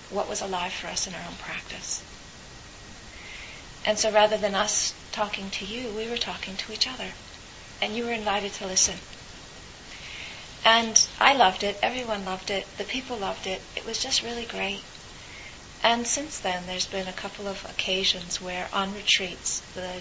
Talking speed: 175 wpm